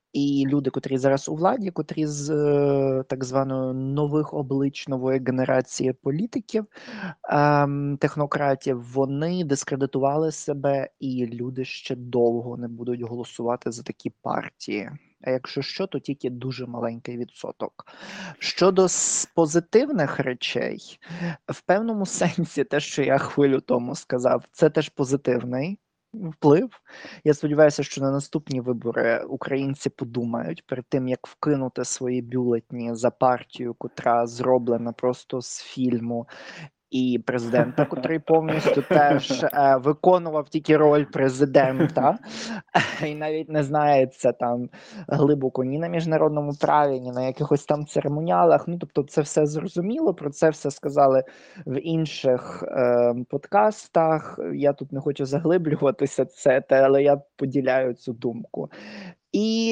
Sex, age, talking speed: male, 20-39, 125 wpm